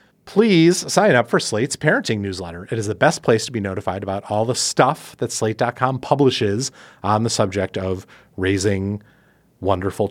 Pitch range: 100-145 Hz